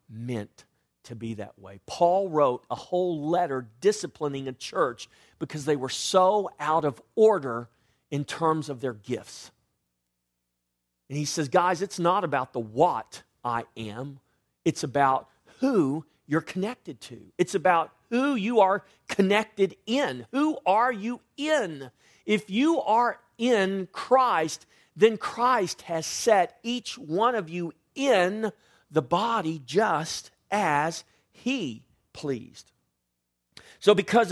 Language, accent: English, American